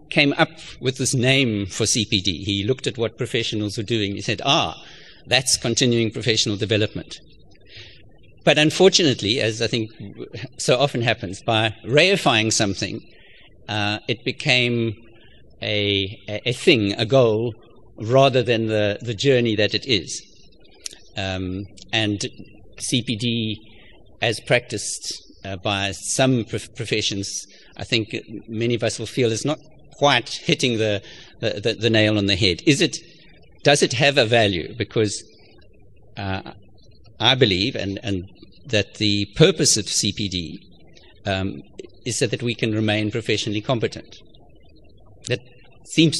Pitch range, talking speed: 105-125 Hz, 140 wpm